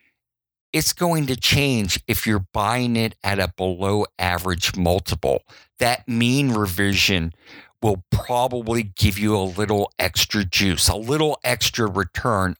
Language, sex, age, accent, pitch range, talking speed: English, male, 50-69, American, 95-135 Hz, 135 wpm